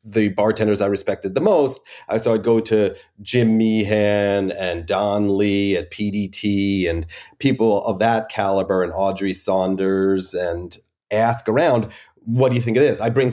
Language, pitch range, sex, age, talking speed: English, 100-115 Hz, male, 40-59, 160 wpm